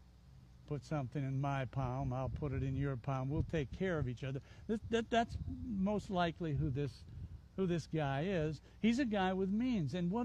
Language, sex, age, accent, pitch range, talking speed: English, male, 60-79, American, 130-195 Hz, 195 wpm